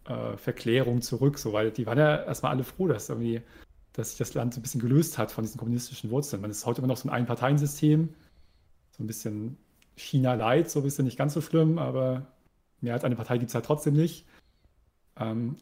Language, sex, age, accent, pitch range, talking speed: German, male, 40-59, German, 115-140 Hz, 210 wpm